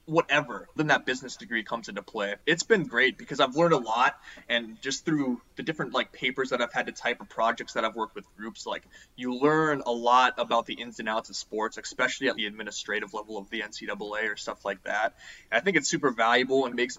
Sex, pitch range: male, 110-145 Hz